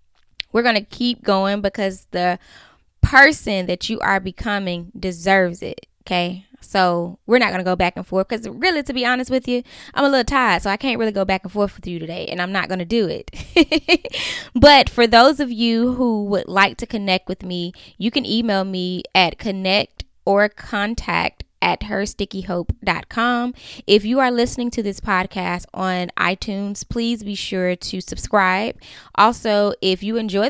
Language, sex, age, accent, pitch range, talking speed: English, female, 10-29, American, 185-230 Hz, 185 wpm